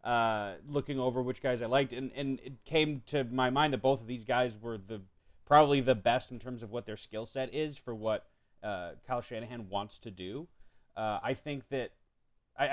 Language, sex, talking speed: English, male, 210 wpm